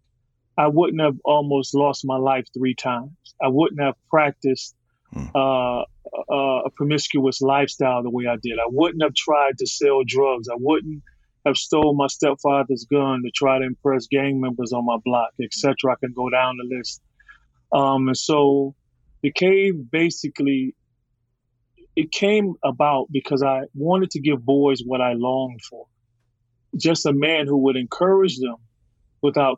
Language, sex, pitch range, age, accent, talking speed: English, male, 125-145 Hz, 30-49, American, 160 wpm